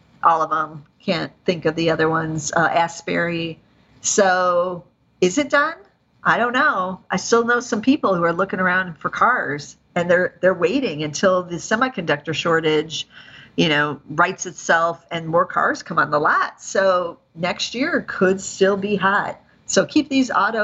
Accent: American